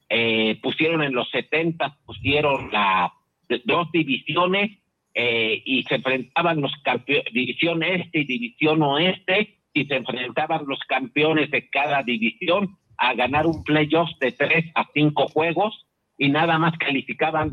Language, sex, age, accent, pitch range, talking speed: Spanish, male, 50-69, Mexican, 135-165 Hz, 140 wpm